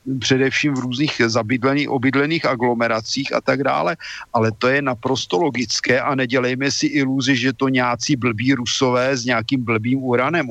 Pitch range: 125-145 Hz